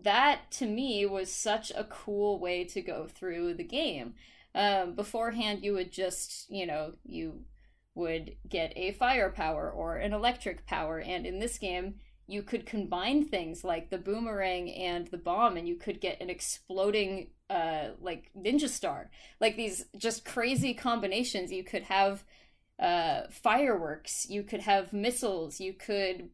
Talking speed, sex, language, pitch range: 155 wpm, female, English, 180-235 Hz